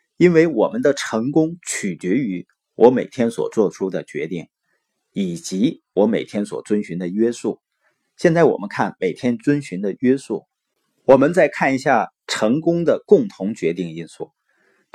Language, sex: Chinese, male